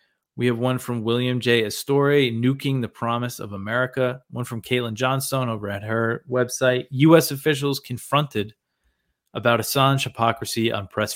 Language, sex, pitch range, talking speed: English, male, 110-135 Hz, 150 wpm